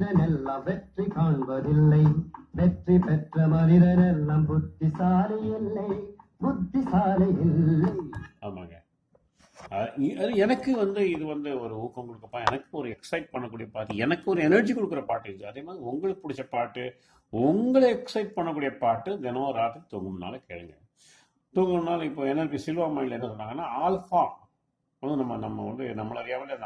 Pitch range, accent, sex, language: 110-165 Hz, Indian, male, English